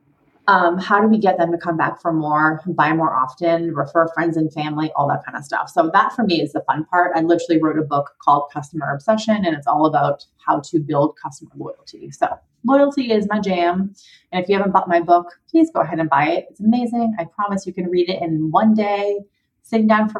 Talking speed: 240 wpm